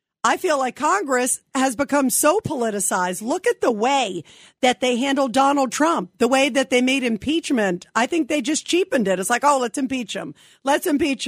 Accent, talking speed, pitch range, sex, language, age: American, 195 wpm, 240-305 Hz, female, English, 50-69